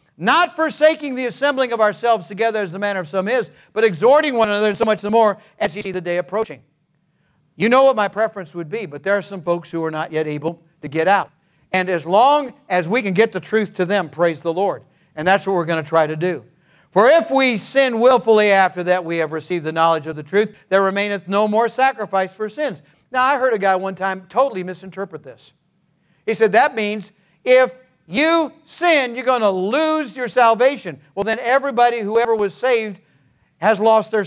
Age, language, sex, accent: 50-69, English, male, American